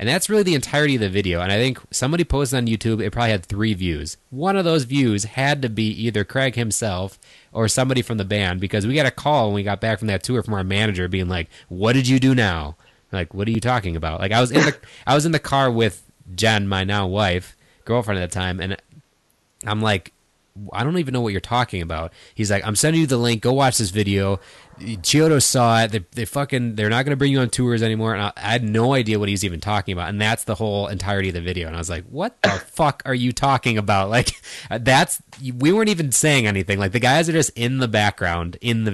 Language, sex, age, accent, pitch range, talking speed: English, male, 20-39, American, 95-125 Hz, 250 wpm